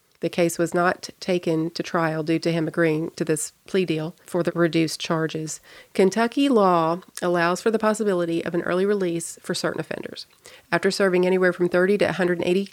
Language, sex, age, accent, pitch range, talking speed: English, female, 40-59, American, 165-180 Hz, 185 wpm